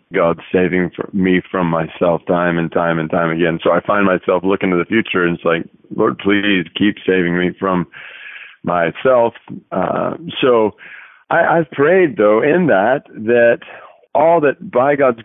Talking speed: 160 wpm